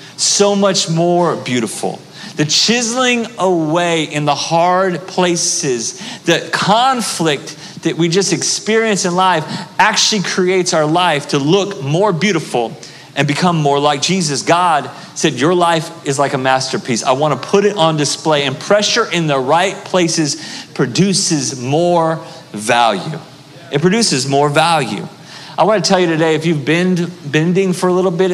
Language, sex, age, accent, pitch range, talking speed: English, male, 40-59, American, 150-190 Hz, 155 wpm